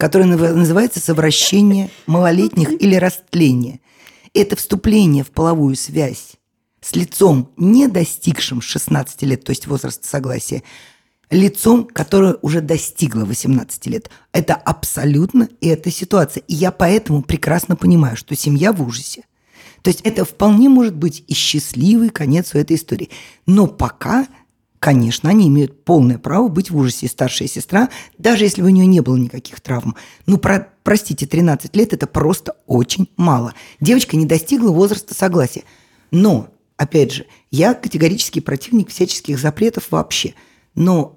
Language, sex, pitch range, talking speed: Russian, female, 145-195 Hz, 140 wpm